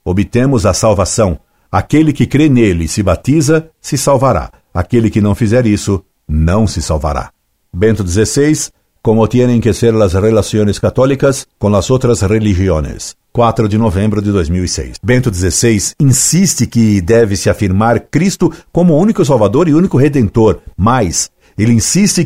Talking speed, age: 150 wpm, 60-79